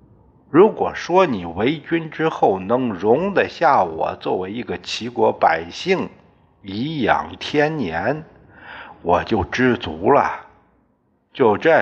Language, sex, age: Chinese, male, 60-79